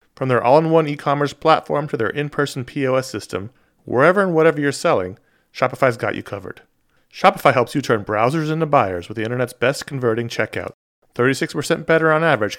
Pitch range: 115-155 Hz